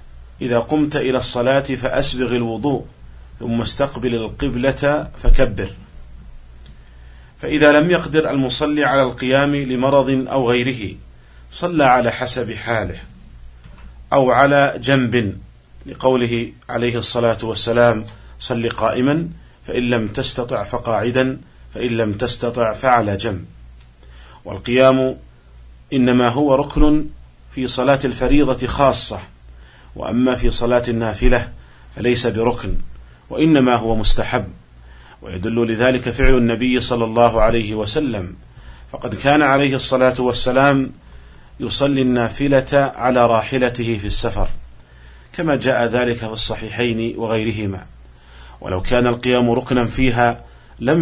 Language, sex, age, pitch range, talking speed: Arabic, male, 40-59, 95-130 Hz, 105 wpm